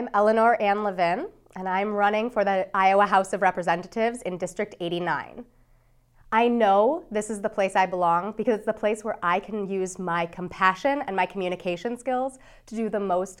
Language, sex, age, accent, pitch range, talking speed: English, female, 30-49, American, 185-235 Hz, 190 wpm